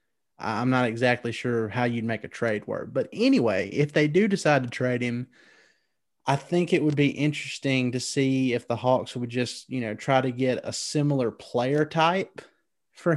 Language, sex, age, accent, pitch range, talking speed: English, male, 30-49, American, 120-140 Hz, 190 wpm